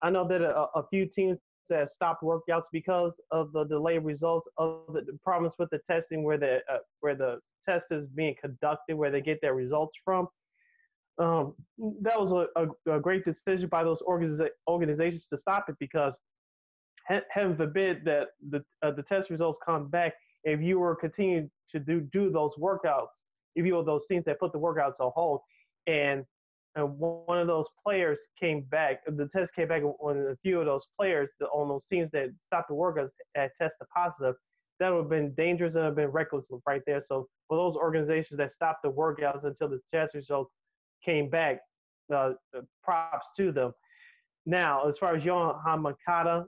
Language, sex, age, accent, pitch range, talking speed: English, male, 20-39, American, 150-175 Hz, 190 wpm